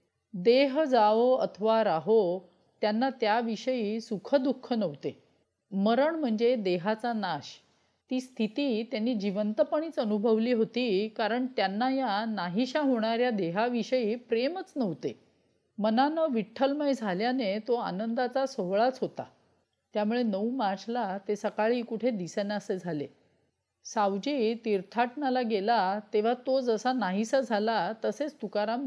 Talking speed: 105 wpm